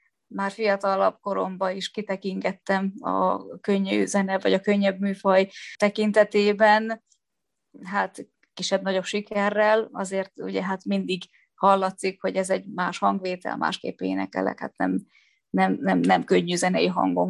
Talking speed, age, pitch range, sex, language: 125 wpm, 30-49, 185-215 Hz, female, Hungarian